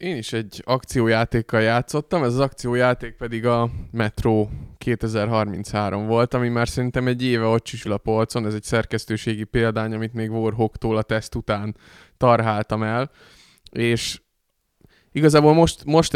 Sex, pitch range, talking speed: male, 110-125 Hz, 140 wpm